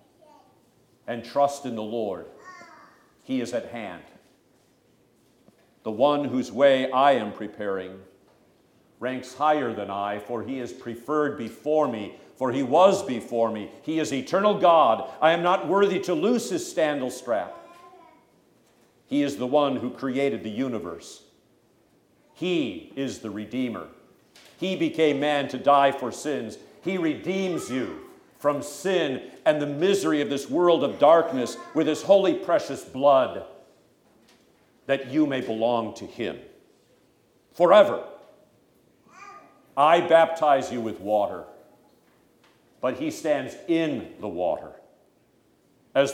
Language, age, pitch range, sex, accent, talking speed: English, 50-69, 125-170 Hz, male, American, 130 wpm